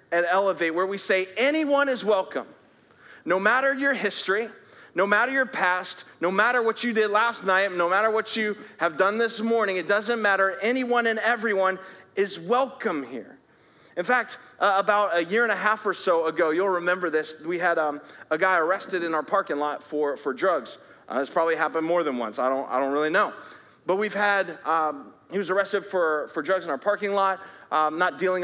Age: 30-49